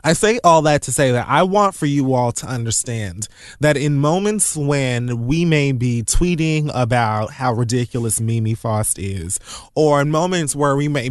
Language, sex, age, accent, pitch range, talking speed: English, male, 20-39, American, 115-155 Hz, 185 wpm